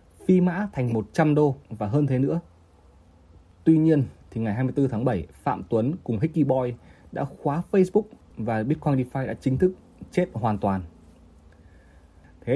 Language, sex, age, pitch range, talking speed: Vietnamese, male, 20-39, 85-145 Hz, 160 wpm